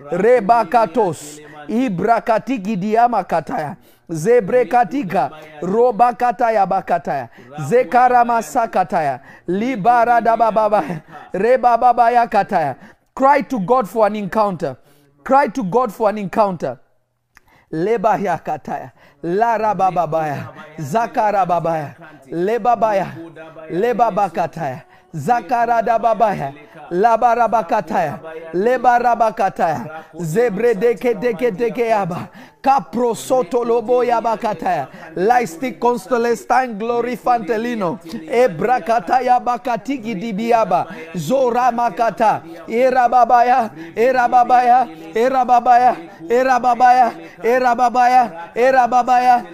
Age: 40-59